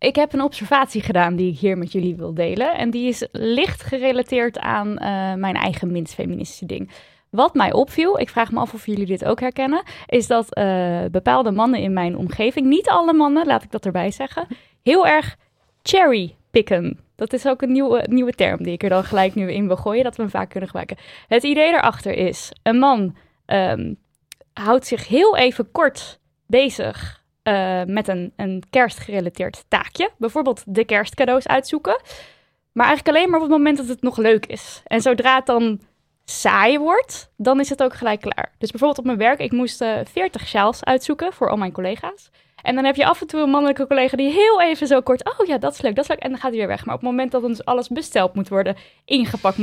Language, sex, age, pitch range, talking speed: Dutch, female, 10-29, 200-275 Hz, 215 wpm